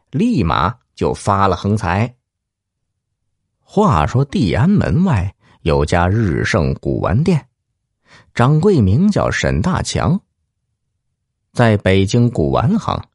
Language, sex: Chinese, male